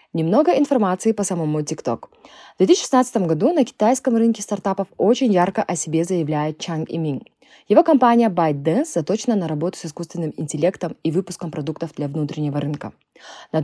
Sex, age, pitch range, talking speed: female, 20-39, 160-225 Hz, 155 wpm